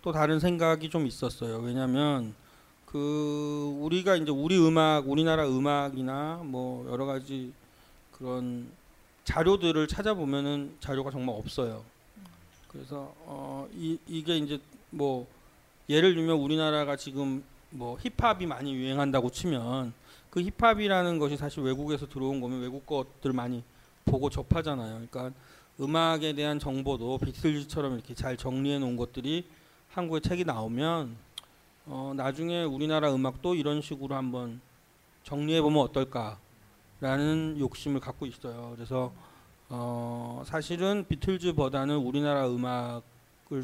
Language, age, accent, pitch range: Korean, 40-59, native, 130-155 Hz